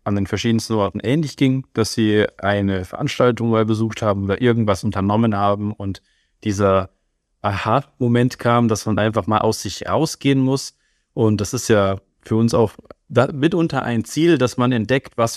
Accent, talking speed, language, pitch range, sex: German, 170 wpm, German, 100-120 Hz, male